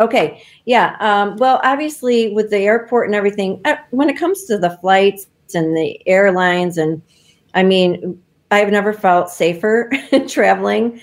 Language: English